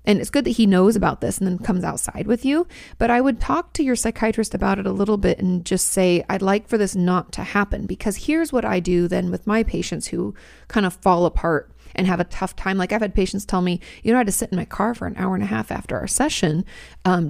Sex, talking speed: female, 280 wpm